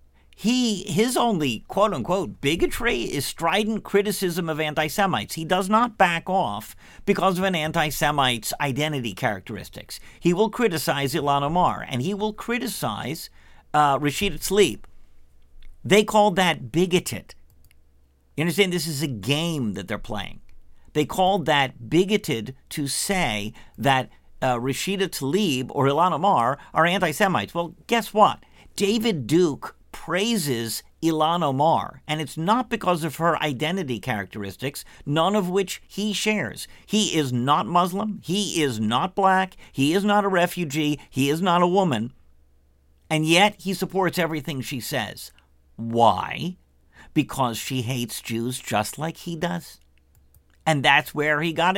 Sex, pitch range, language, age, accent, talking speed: male, 120-190 Hz, English, 50-69, American, 145 wpm